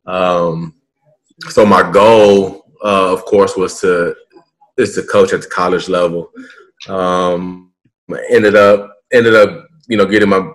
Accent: American